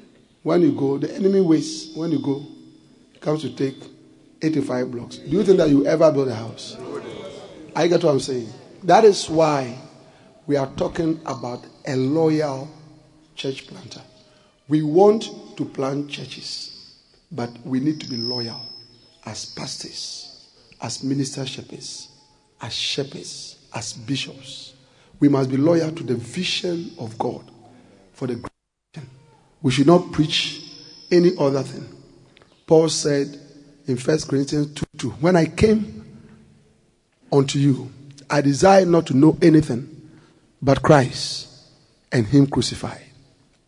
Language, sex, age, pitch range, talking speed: English, male, 50-69, 130-160 Hz, 135 wpm